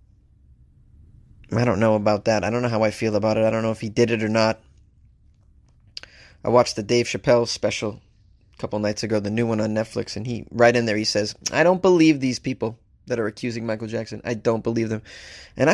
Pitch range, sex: 105-170 Hz, male